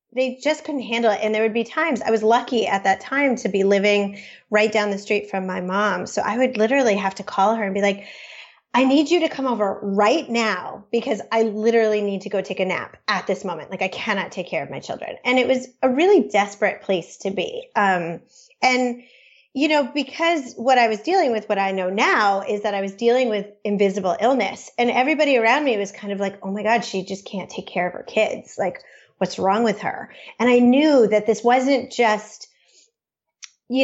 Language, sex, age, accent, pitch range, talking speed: English, female, 30-49, American, 205-260 Hz, 225 wpm